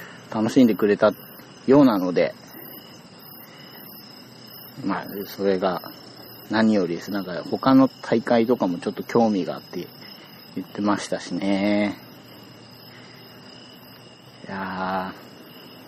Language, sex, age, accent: Japanese, male, 40-59, native